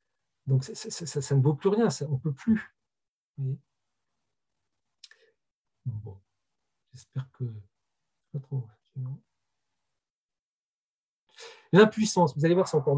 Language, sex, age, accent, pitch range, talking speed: French, male, 50-69, French, 130-180 Hz, 115 wpm